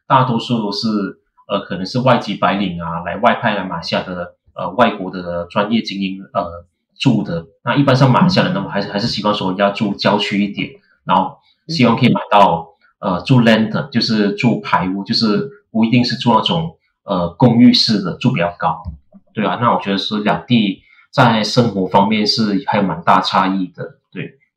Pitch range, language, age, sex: 100-130 Hz, Chinese, 30-49, male